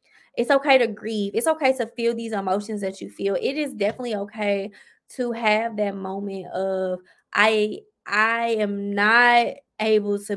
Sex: female